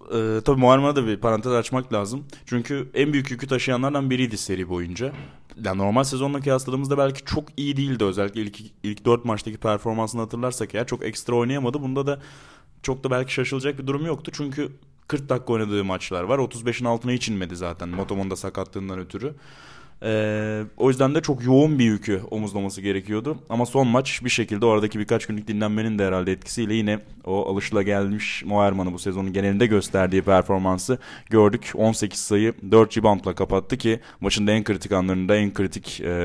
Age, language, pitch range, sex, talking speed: 20-39, Turkish, 100-135 Hz, male, 175 wpm